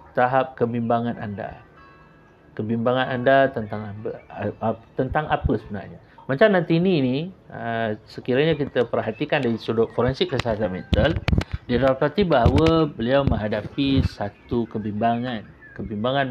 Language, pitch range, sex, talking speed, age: Malay, 110-145 Hz, male, 100 wpm, 50-69